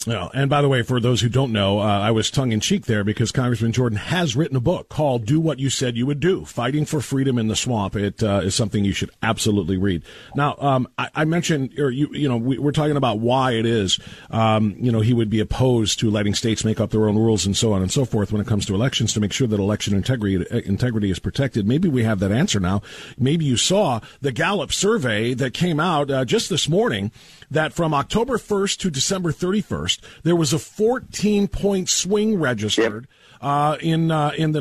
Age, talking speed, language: 40-59, 230 wpm, English